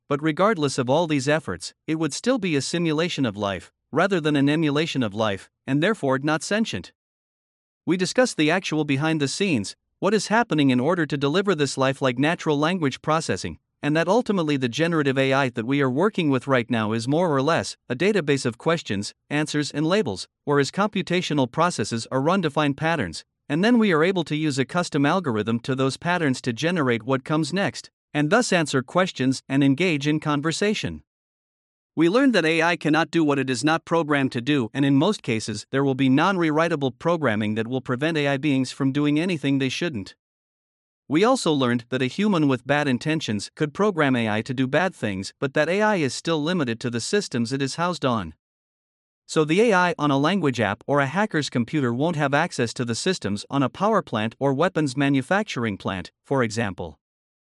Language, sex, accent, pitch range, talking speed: English, male, American, 130-165 Hz, 200 wpm